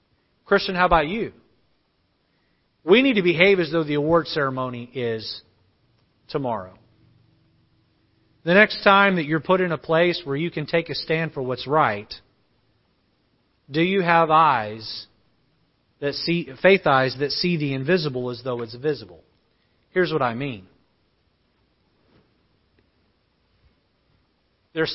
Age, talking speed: 40-59, 130 wpm